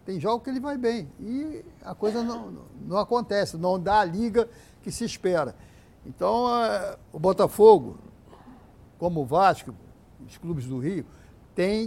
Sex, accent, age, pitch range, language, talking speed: male, Brazilian, 60-79, 170-220 Hz, Portuguese, 160 wpm